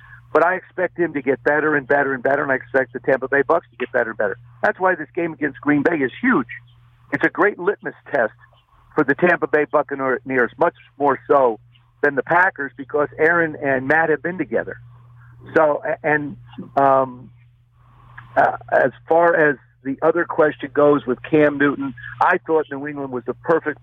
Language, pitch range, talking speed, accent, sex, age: English, 120-155 Hz, 190 wpm, American, male, 50-69